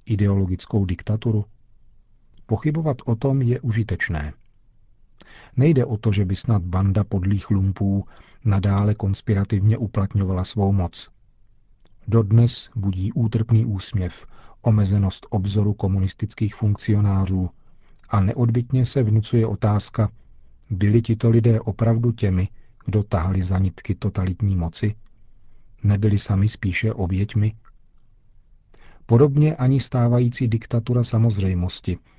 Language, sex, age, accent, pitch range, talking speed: Czech, male, 40-59, native, 100-115 Hz, 100 wpm